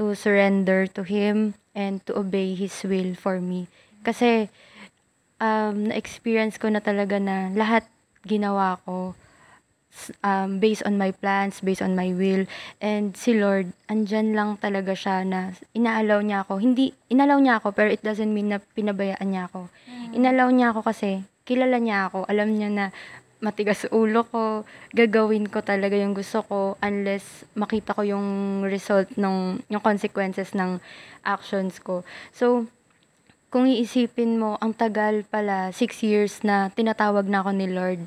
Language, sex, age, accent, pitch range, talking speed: Filipino, female, 20-39, native, 195-220 Hz, 155 wpm